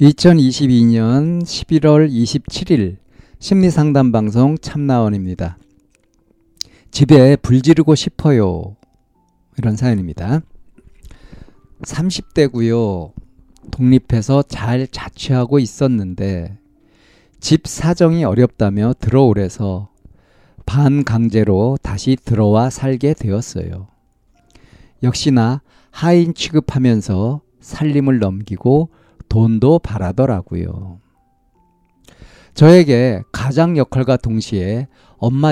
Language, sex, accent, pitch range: Korean, male, native, 100-140 Hz